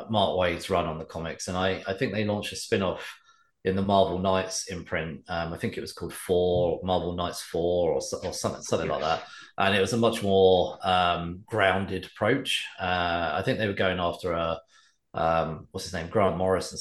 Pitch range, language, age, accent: 85-115 Hz, English, 30-49, British